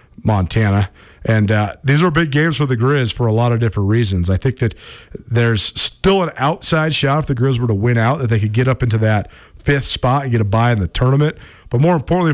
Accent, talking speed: American, 245 wpm